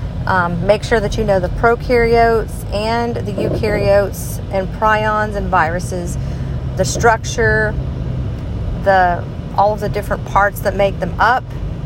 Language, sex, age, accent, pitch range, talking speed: English, female, 40-59, American, 145-215 Hz, 135 wpm